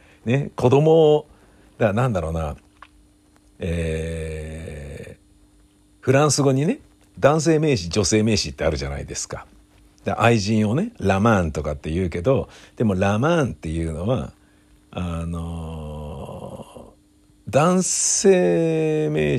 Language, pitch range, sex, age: Japanese, 80-120 Hz, male, 60-79